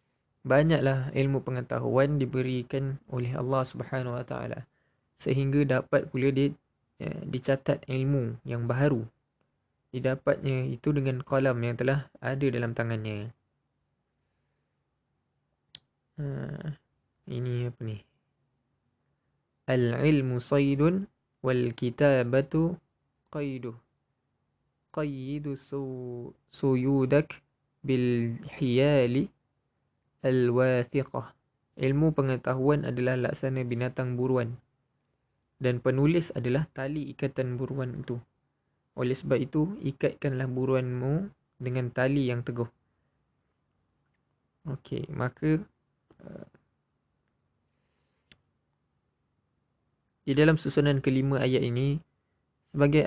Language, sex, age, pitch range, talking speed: Malay, male, 20-39, 125-140 Hz, 80 wpm